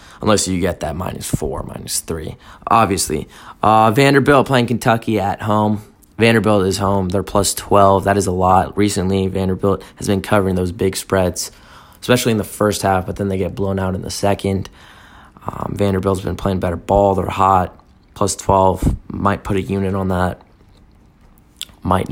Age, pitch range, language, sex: 20-39, 95-105 Hz, English, male